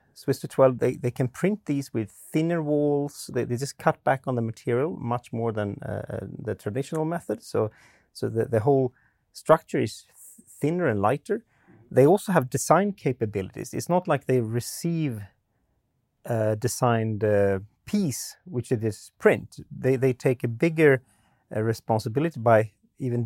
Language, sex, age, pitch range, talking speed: English, male, 30-49, 115-145 Hz, 165 wpm